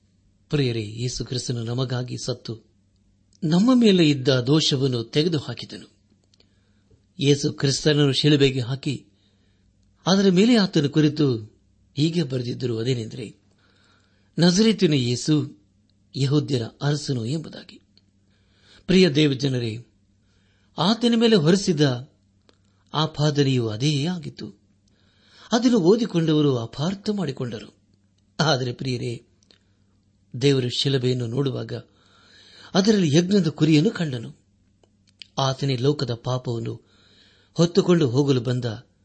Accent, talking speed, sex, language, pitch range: native, 80 wpm, male, Kannada, 100-150 Hz